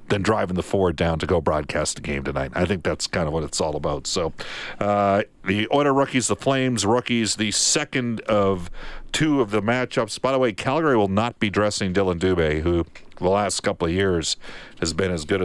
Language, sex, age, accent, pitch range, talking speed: English, male, 50-69, American, 90-120 Hz, 215 wpm